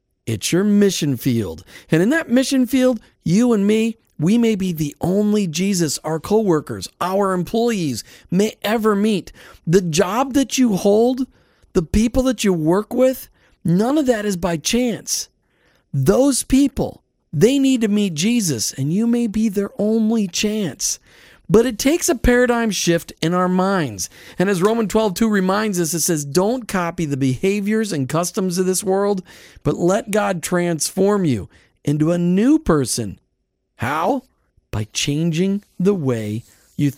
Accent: American